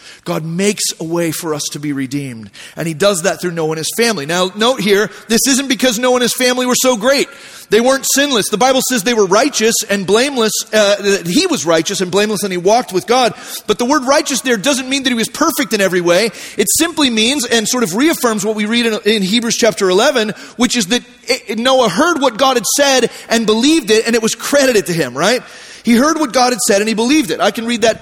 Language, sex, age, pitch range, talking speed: English, male, 30-49, 210-265 Hz, 255 wpm